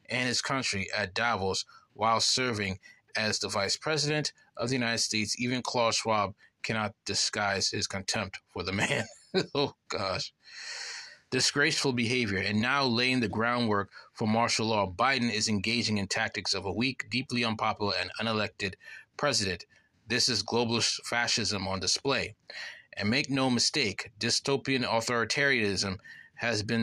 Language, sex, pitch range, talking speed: English, male, 105-125 Hz, 145 wpm